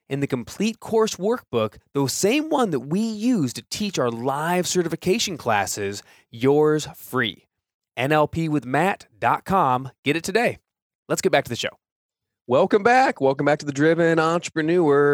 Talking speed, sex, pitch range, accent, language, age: 145 wpm, male, 110-145 Hz, American, English, 20-39